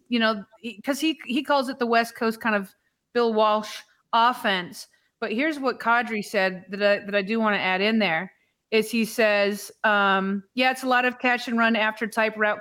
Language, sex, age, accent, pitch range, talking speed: English, female, 30-49, American, 200-245 Hz, 210 wpm